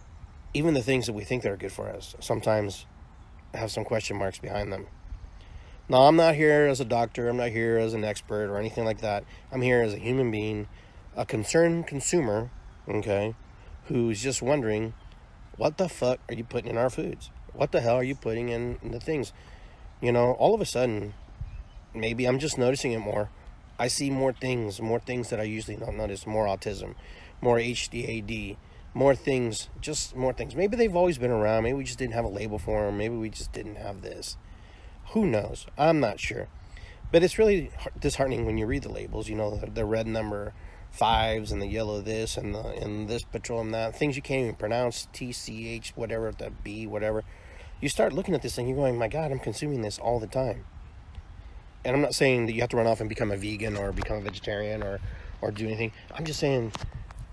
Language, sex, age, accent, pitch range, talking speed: English, male, 30-49, American, 100-125 Hz, 210 wpm